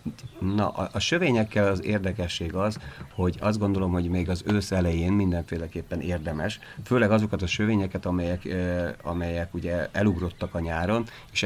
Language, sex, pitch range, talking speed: Hungarian, male, 85-100 Hz, 150 wpm